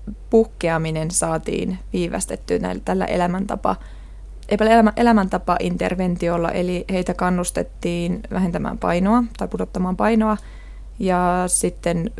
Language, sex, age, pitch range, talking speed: Finnish, female, 20-39, 175-210 Hz, 80 wpm